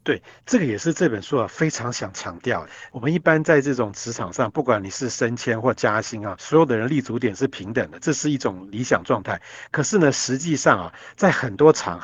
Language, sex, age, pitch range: Chinese, male, 50-69, 125-165 Hz